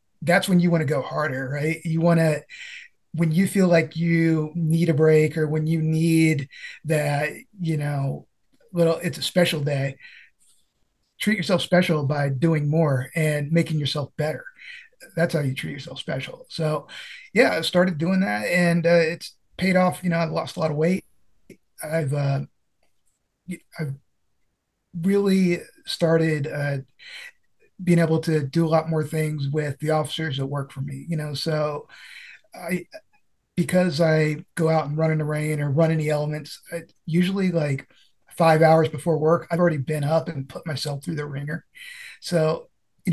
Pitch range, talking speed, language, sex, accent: 150-170 Hz, 170 wpm, English, male, American